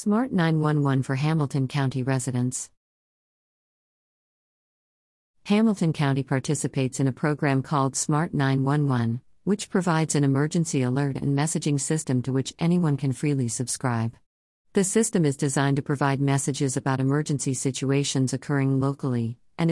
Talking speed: 130 wpm